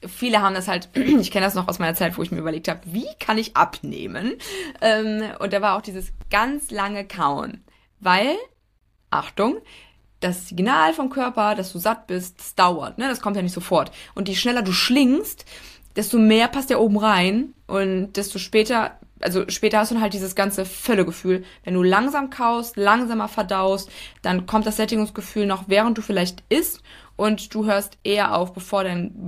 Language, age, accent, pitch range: German, 20-39, German, 185-225 Hz